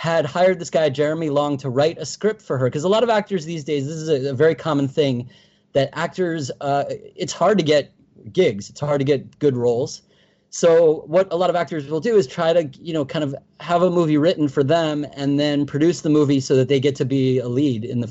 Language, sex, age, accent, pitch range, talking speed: English, male, 30-49, American, 130-160 Hz, 250 wpm